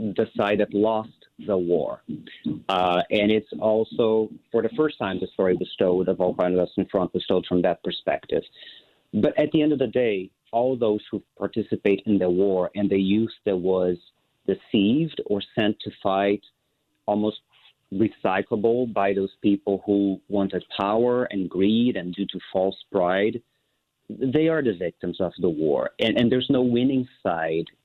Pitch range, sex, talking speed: 95-120 Hz, male, 170 wpm